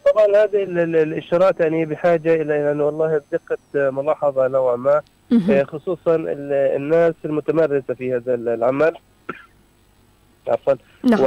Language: Arabic